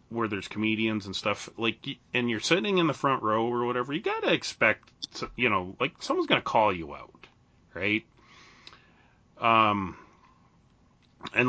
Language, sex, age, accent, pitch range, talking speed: English, male, 30-49, American, 95-125 Hz, 160 wpm